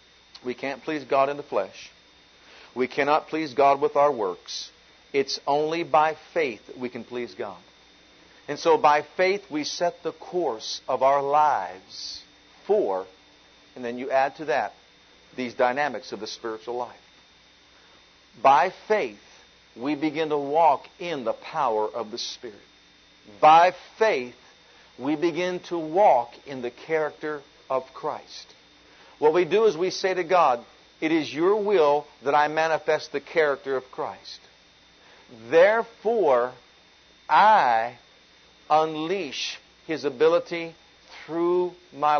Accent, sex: American, male